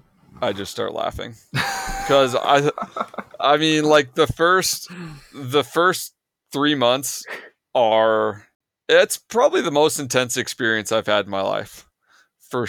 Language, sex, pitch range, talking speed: English, male, 105-130 Hz, 130 wpm